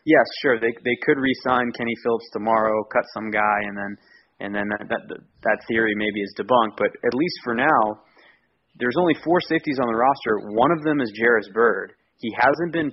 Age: 20-39